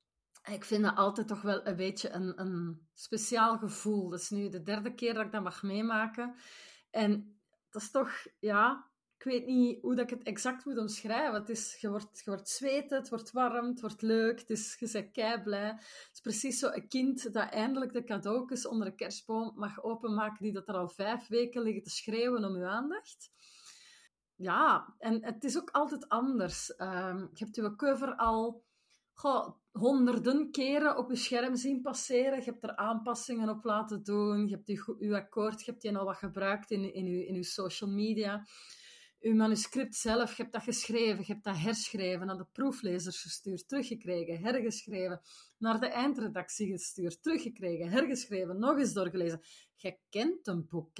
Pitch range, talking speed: 200-245 Hz, 185 wpm